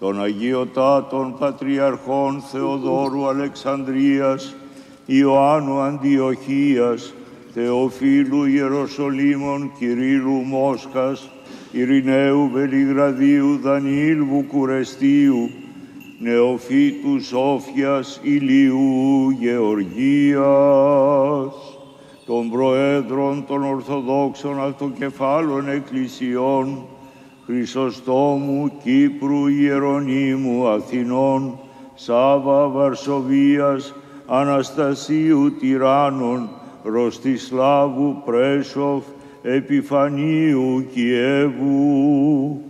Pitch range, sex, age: 130-140 Hz, male, 60-79